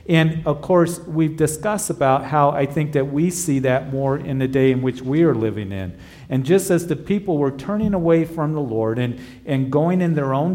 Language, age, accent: English, 50-69, American